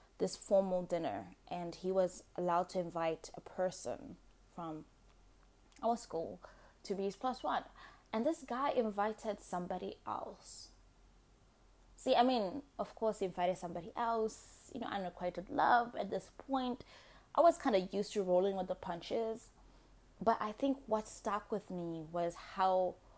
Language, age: English, 20-39